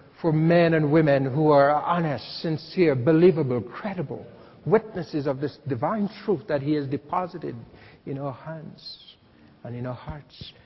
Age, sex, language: 60-79, male, English